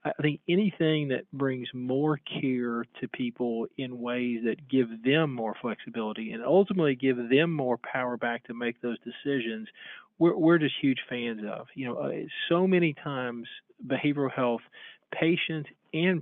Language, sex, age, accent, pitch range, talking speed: English, male, 40-59, American, 125-150 Hz, 155 wpm